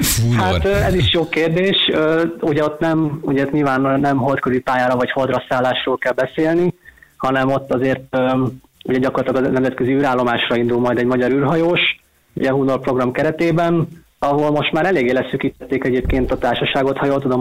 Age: 20-39